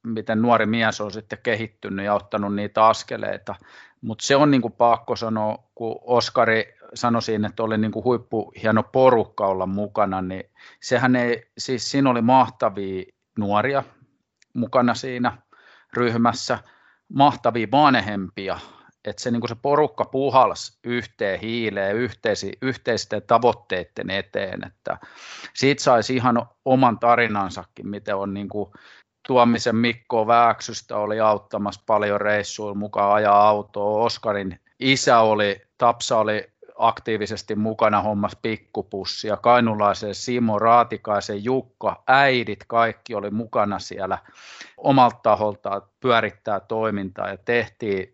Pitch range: 105-120 Hz